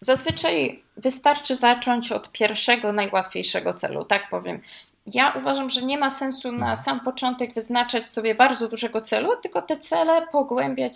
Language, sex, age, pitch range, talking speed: Polish, female, 20-39, 220-280 Hz, 150 wpm